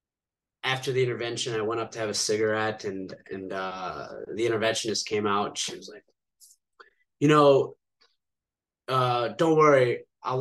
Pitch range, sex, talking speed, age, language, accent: 105-135 Hz, male, 155 wpm, 20-39, English, American